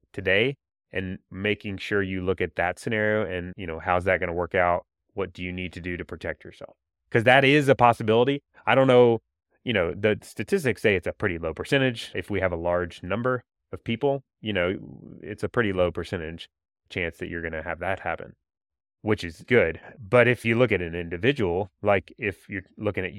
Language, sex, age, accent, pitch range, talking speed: English, male, 30-49, American, 90-115 Hz, 215 wpm